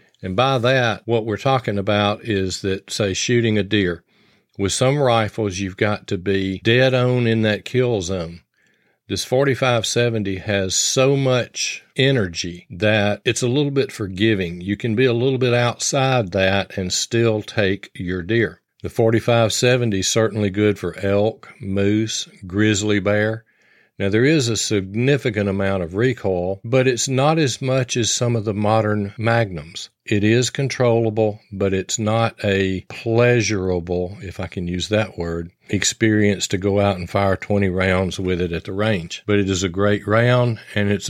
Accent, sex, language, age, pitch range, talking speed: American, male, English, 50-69, 100-120 Hz, 170 wpm